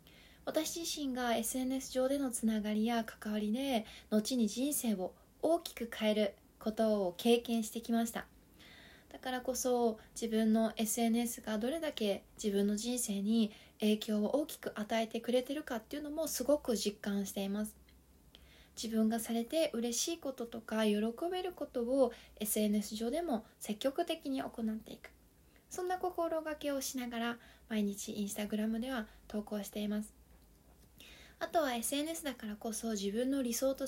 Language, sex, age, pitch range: Japanese, female, 20-39, 215-255 Hz